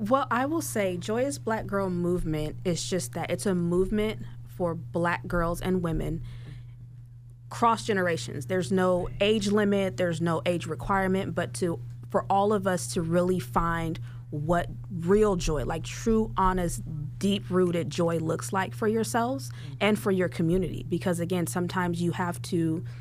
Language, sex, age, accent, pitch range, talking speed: English, female, 20-39, American, 150-185 Hz, 155 wpm